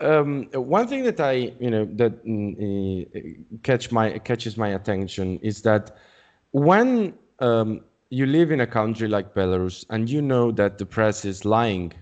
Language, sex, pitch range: Italian, male, 110-150 Hz